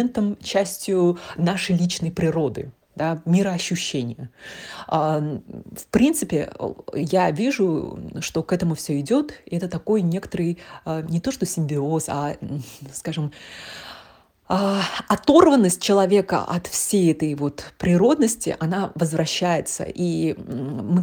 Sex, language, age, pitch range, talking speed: female, Russian, 30-49, 155-190 Hz, 100 wpm